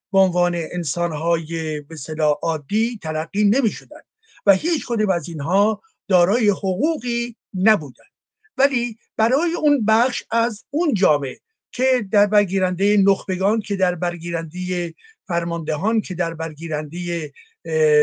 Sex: male